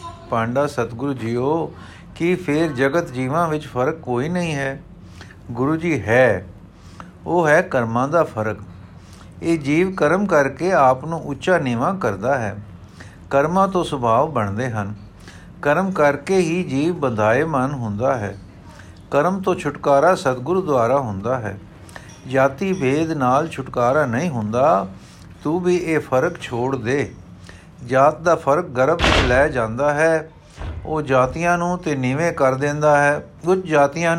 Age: 60-79